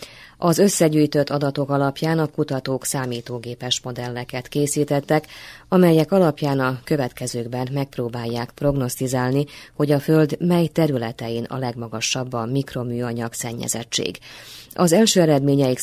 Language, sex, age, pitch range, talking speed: Hungarian, female, 20-39, 120-145 Hz, 105 wpm